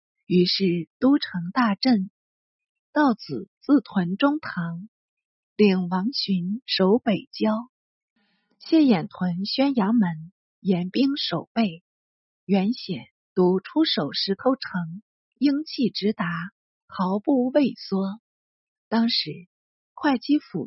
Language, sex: Chinese, female